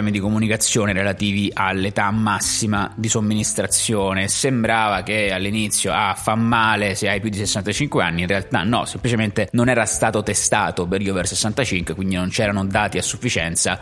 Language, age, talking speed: Italian, 20-39, 155 wpm